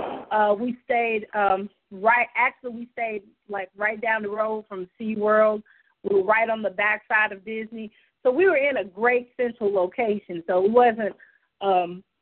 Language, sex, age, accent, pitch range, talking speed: English, female, 40-59, American, 210-245 Hz, 185 wpm